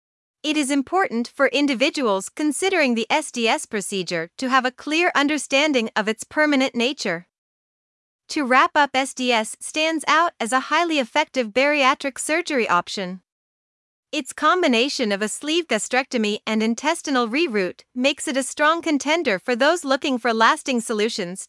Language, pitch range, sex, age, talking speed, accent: English, 235-300 Hz, female, 30-49, 140 wpm, American